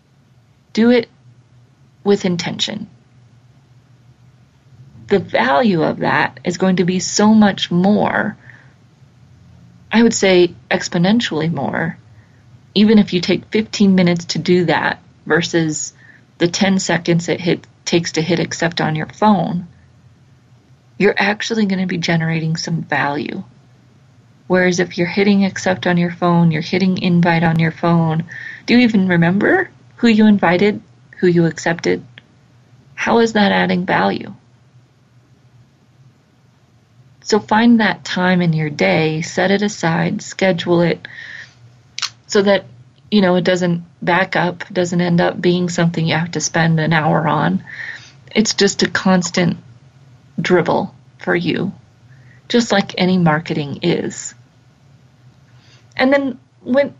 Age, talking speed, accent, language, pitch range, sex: 30-49, 130 wpm, American, English, 130-185 Hz, female